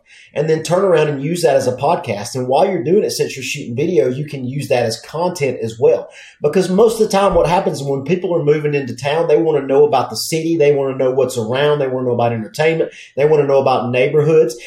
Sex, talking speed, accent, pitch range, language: male, 265 wpm, American, 140-185 Hz, English